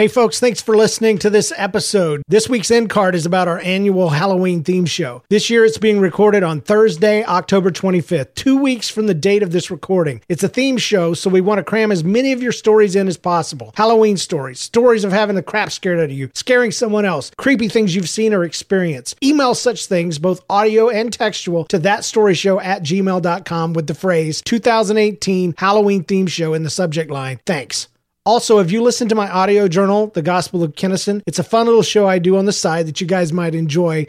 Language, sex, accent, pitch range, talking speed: English, male, American, 175-215 Hz, 215 wpm